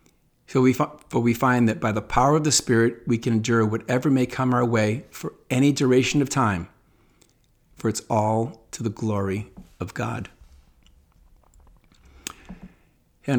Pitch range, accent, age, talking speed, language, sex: 110-140 Hz, American, 50-69, 150 wpm, English, male